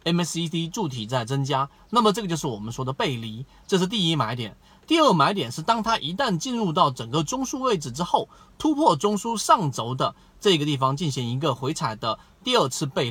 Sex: male